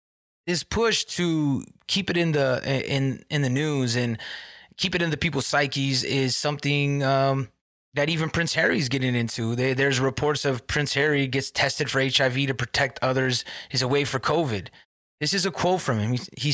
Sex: male